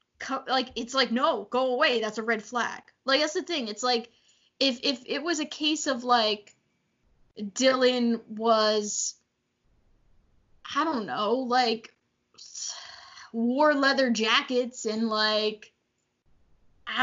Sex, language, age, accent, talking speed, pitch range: female, English, 10-29, American, 125 wpm, 225-280 Hz